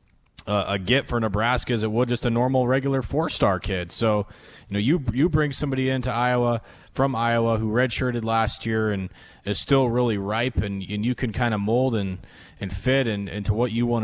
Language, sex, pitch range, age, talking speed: English, male, 100-120 Hz, 20-39, 210 wpm